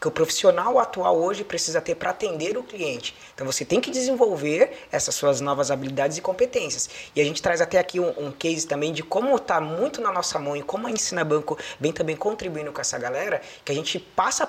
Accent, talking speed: Brazilian, 225 wpm